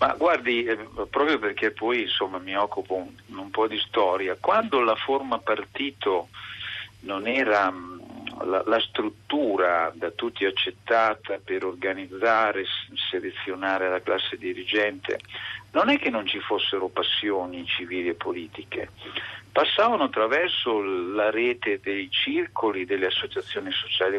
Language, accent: Italian, native